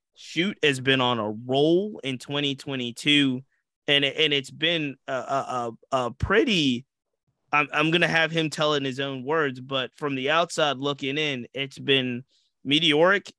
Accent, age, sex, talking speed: American, 20-39, male, 165 wpm